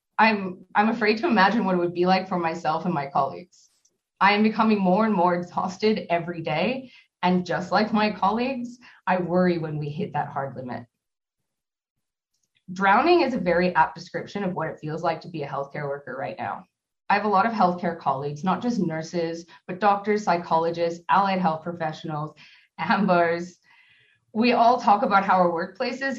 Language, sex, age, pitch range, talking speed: English, female, 20-39, 170-210 Hz, 180 wpm